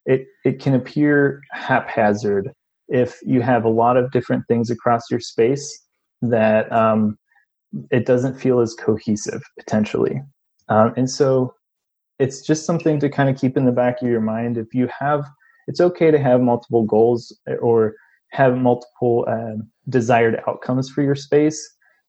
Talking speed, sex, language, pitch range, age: 160 wpm, male, English, 115-140 Hz, 20-39